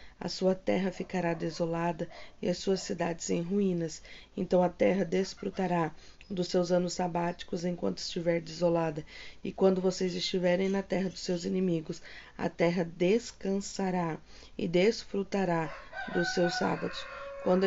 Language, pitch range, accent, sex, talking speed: Portuguese, 175-195 Hz, Brazilian, female, 135 wpm